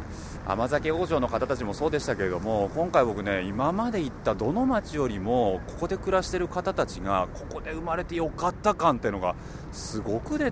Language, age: Japanese, 30-49